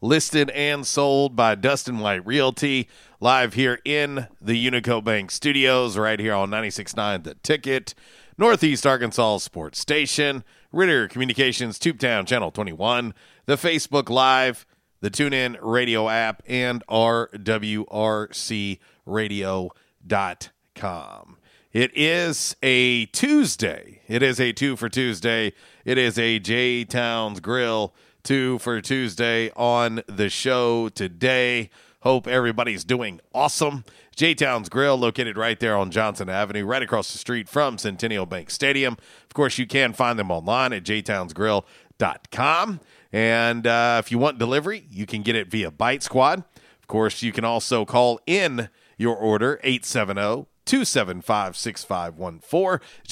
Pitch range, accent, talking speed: 110-135 Hz, American, 125 wpm